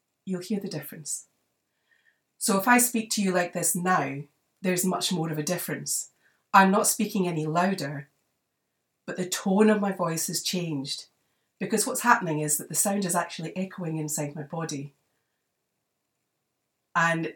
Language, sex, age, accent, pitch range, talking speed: English, female, 40-59, British, 160-215 Hz, 160 wpm